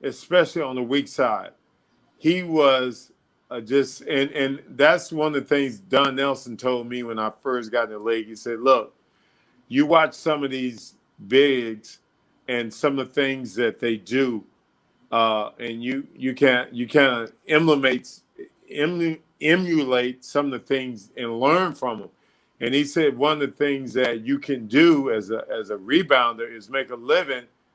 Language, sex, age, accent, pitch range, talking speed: English, male, 50-69, American, 125-150 Hz, 180 wpm